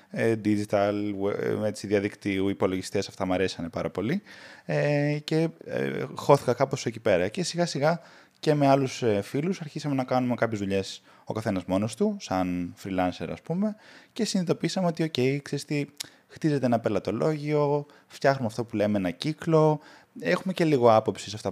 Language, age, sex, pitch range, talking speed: Greek, 20-39, male, 105-150 Hz, 150 wpm